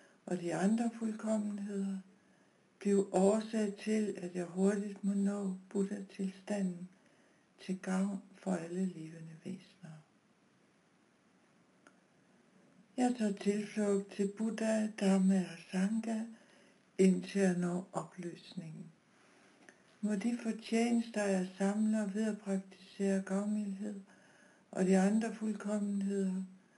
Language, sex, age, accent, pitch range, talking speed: Danish, female, 60-79, native, 190-225 Hz, 100 wpm